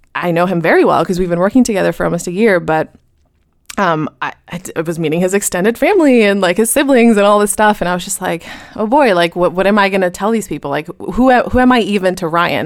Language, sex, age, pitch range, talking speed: English, female, 20-39, 165-215 Hz, 265 wpm